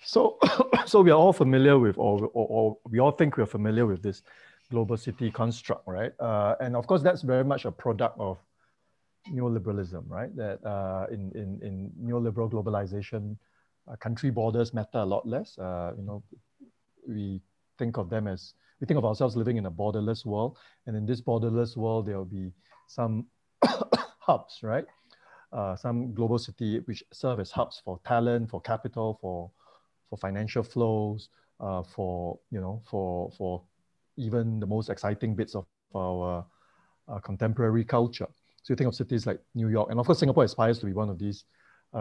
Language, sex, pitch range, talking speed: English, male, 100-120 Hz, 180 wpm